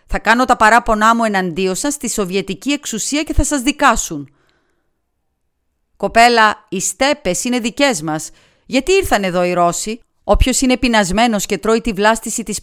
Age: 30-49